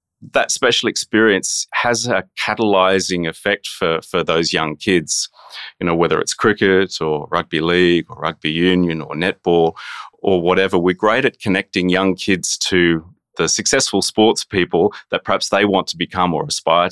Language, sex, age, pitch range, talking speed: English, male, 30-49, 85-95 Hz, 165 wpm